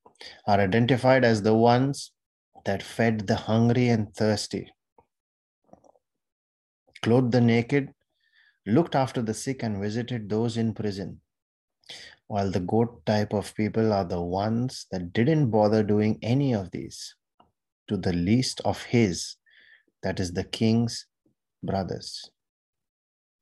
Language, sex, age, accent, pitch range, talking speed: English, male, 30-49, Indian, 95-115 Hz, 125 wpm